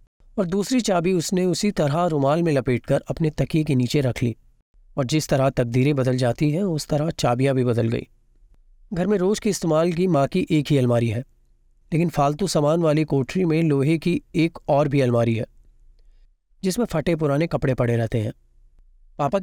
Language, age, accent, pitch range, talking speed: Hindi, 30-49, native, 125-165 Hz, 190 wpm